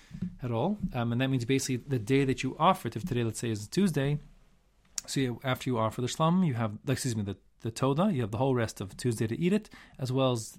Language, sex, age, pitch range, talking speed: English, male, 30-49, 105-130 Hz, 265 wpm